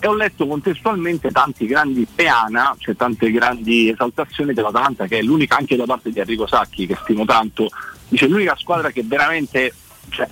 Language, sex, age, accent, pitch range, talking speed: Italian, male, 40-59, native, 115-190 Hz, 180 wpm